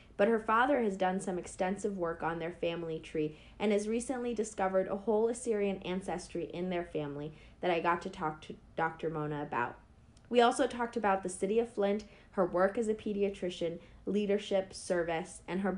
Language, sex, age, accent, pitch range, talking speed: English, female, 30-49, American, 160-215 Hz, 185 wpm